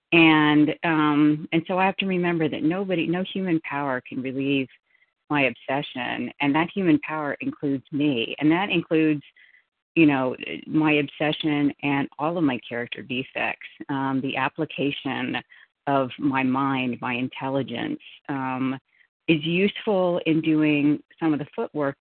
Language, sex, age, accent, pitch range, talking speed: English, female, 40-59, American, 135-160 Hz, 145 wpm